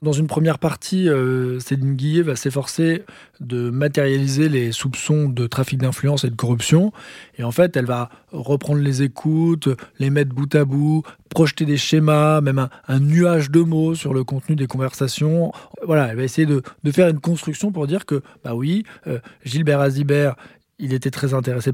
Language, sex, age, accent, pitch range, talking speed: French, male, 20-39, French, 130-155 Hz, 185 wpm